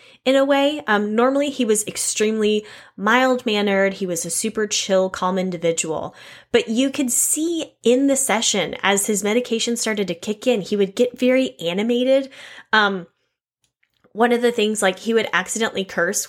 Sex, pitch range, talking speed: female, 185-245 Hz, 170 wpm